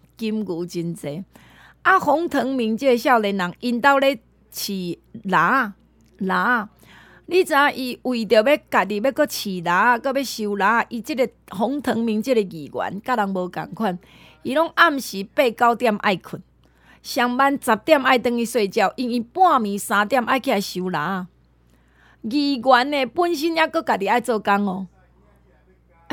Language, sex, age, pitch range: Chinese, female, 30-49, 205-290 Hz